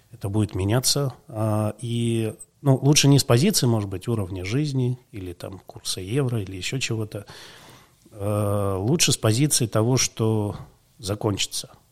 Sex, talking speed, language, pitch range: male, 130 wpm, Russian, 100-125 Hz